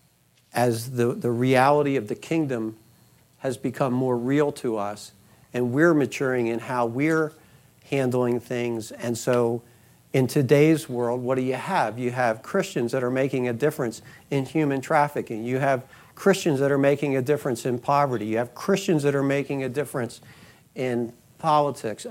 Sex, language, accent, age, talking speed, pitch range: male, English, American, 60-79, 165 wpm, 125-160 Hz